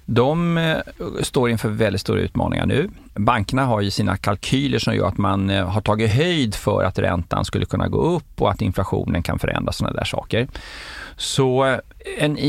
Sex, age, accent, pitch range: male, 30-49, native, 100-135 Hz